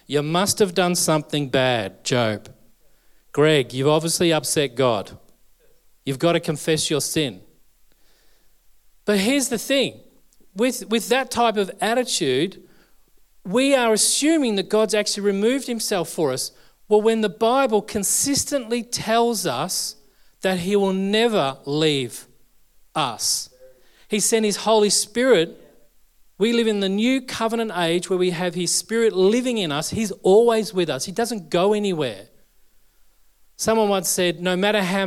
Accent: Australian